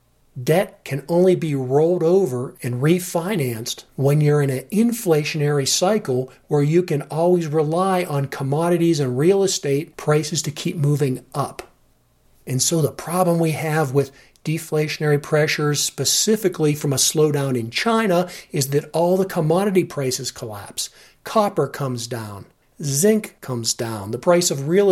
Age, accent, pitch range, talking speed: 50-69, American, 140-180 Hz, 145 wpm